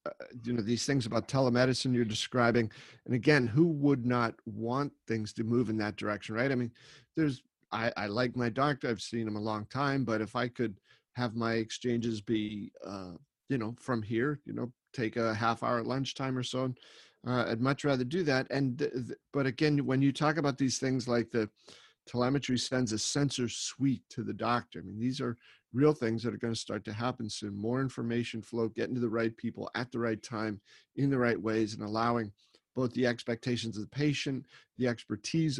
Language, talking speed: English, 205 wpm